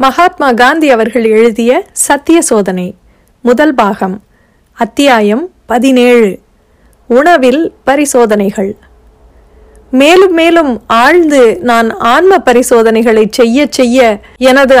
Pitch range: 225-275 Hz